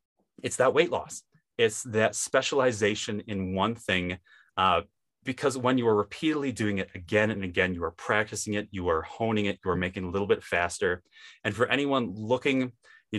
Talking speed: 180 wpm